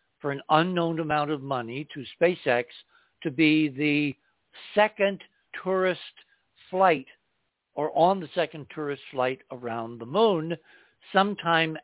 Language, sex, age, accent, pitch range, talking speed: English, male, 60-79, American, 130-170 Hz, 120 wpm